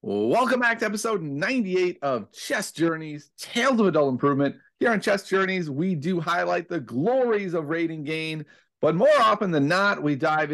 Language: English